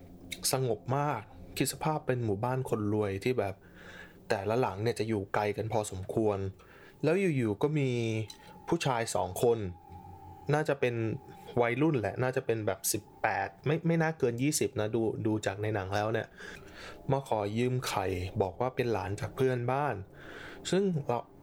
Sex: male